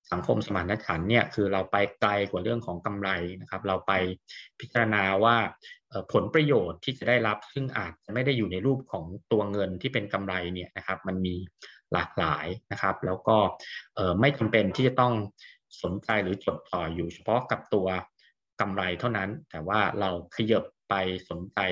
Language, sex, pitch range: English, male, 100-120 Hz